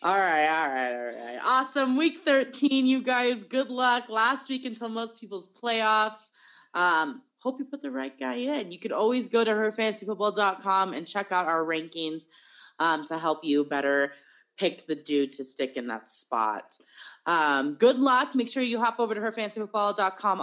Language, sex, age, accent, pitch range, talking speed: English, female, 30-49, American, 155-230 Hz, 180 wpm